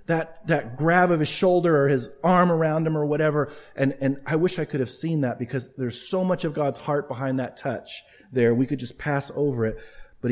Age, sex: 40-59, male